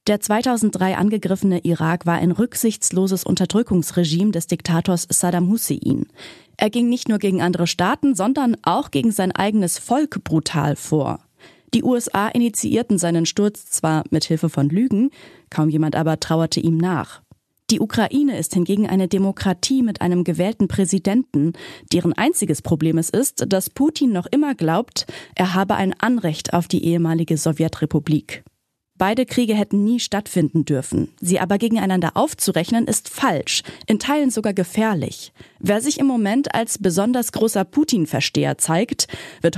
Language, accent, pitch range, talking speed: German, German, 170-230 Hz, 145 wpm